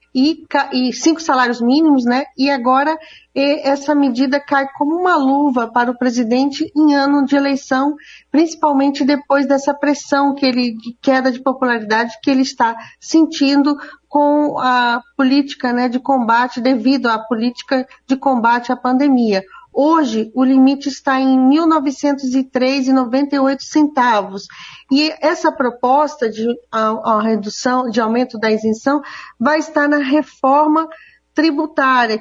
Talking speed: 125 wpm